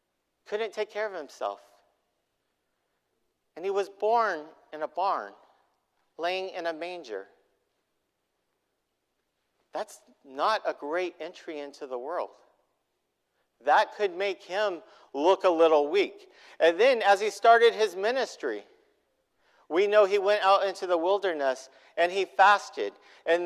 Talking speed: 130 wpm